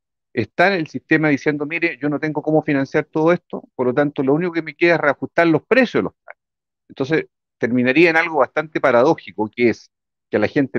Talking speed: 220 wpm